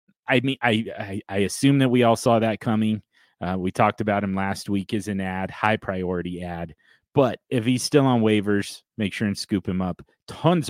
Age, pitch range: 30-49, 100-120 Hz